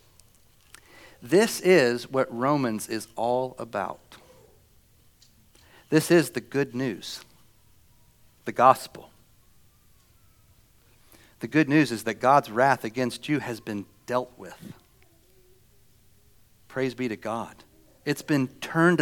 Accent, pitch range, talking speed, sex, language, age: American, 110-130 Hz, 105 wpm, male, English, 40-59